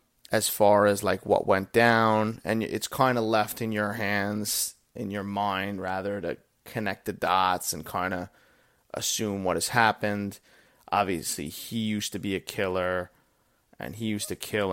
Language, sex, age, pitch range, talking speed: English, male, 30-49, 100-115 Hz, 170 wpm